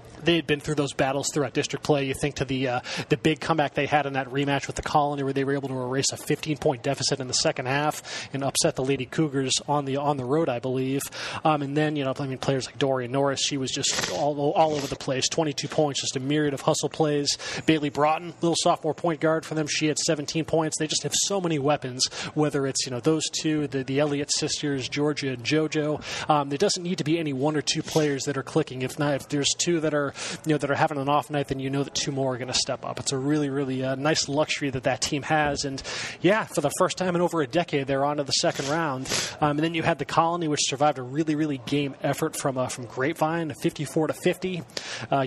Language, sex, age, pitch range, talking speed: English, male, 20-39, 135-155 Hz, 265 wpm